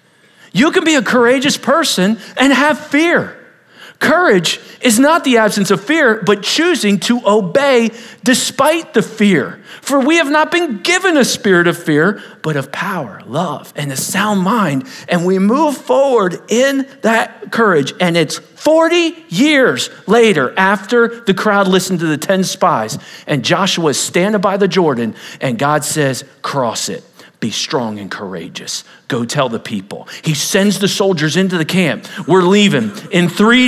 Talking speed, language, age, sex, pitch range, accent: 165 wpm, English, 40-59, male, 185-255 Hz, American